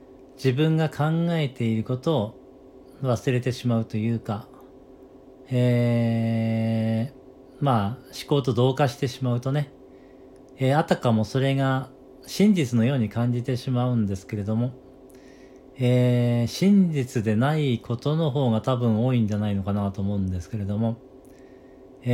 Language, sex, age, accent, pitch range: Japanese, male, 40-59, native, 120-140 Hz